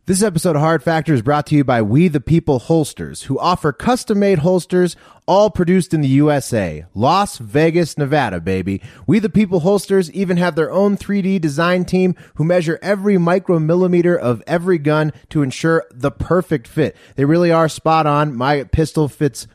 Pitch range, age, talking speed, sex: 145-180 Hz, 30-49, 180 wpm, male